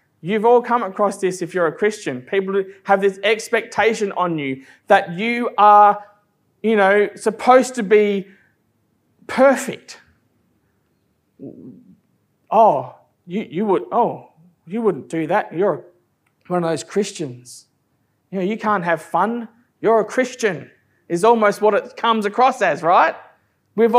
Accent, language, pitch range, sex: Australian, English, 140-205 Hz, male